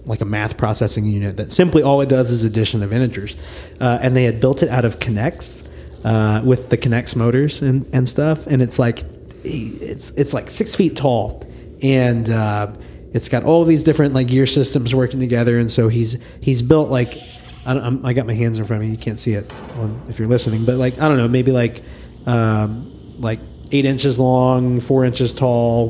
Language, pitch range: English, 110-130 Hz